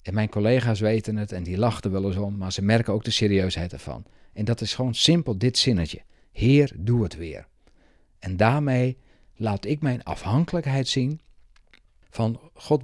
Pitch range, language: 105-135 Hz, Dutch